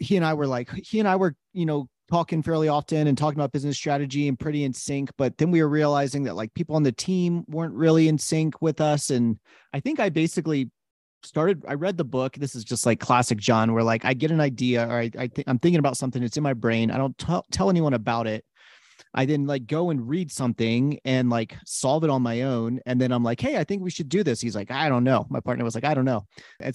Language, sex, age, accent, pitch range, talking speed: English, male, 30-49, American, 120-150 Hz, 265 wpm